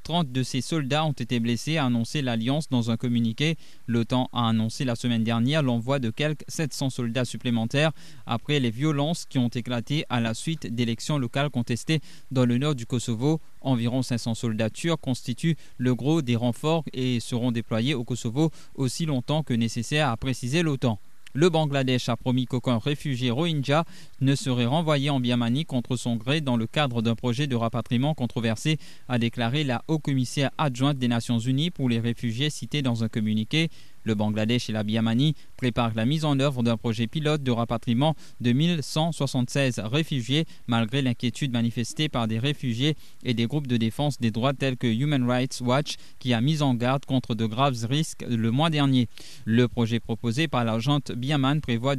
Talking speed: 180 wpm